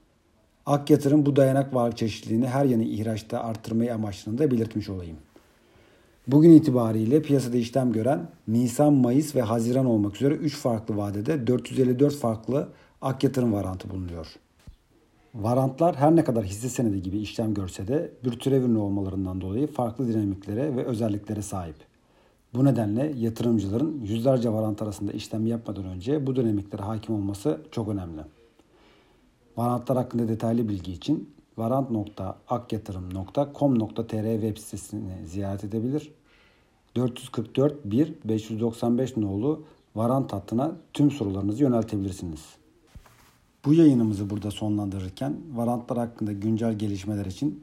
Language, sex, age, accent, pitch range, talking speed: Turkish, male, 50-69, native, 105-130 Hz, 120 wpm